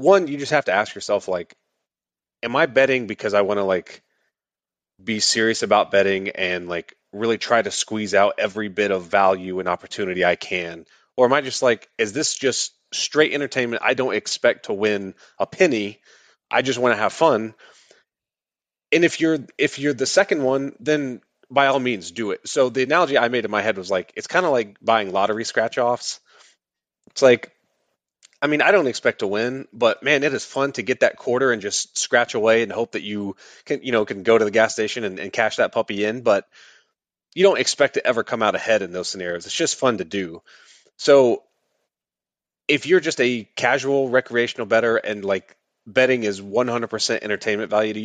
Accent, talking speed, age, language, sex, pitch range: American, 205 wpm, 30-49, English, male, 100-125 Hz